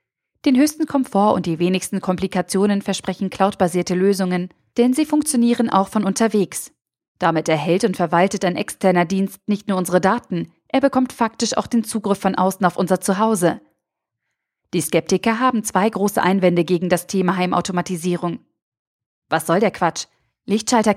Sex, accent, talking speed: female, German, 150 wpm